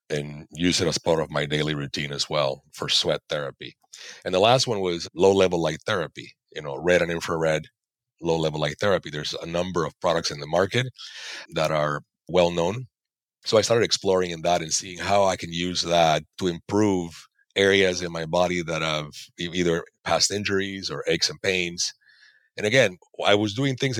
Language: English